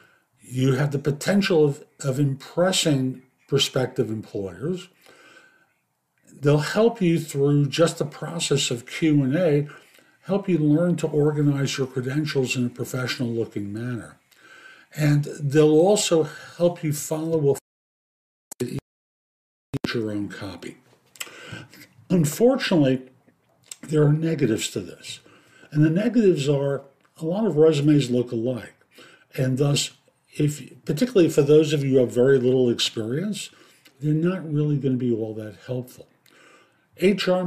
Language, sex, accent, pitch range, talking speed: English, male, American, 120-155 Hz, 125 wpm